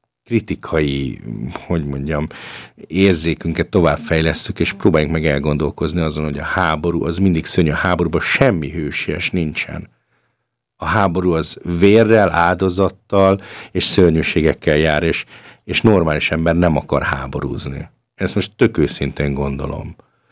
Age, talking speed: 50-69, 120 wpm